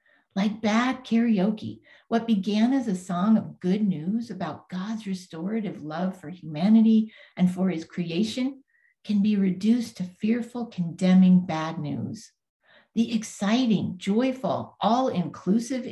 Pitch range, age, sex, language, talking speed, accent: 185-235 Hz, 50-69, female, English, 125 wpm, American